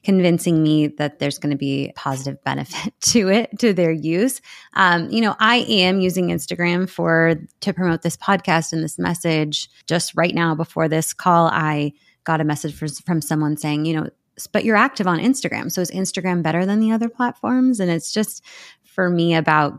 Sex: female